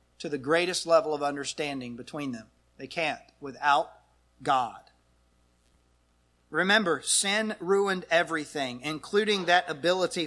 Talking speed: 110 wpm